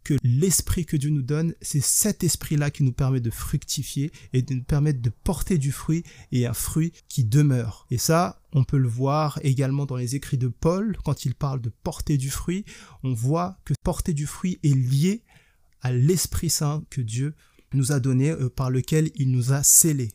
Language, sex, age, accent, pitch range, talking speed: French, male, 20-39, French, 130-155 Hz, 205 wpm